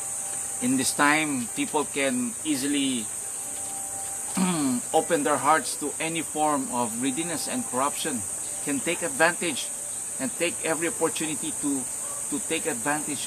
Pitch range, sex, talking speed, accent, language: 120-170 Hz, male, 120 wpm, Filipino, English